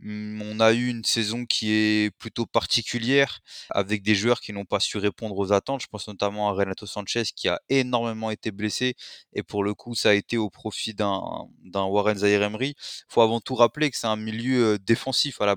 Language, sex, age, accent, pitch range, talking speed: French, male, 20-39, French, 100-120 Hz, 210 wpm